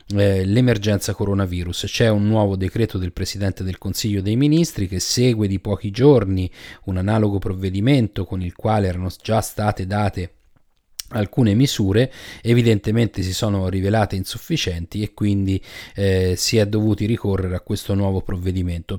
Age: 30-49